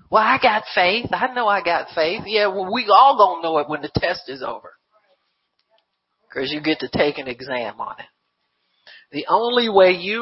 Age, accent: 50-69, American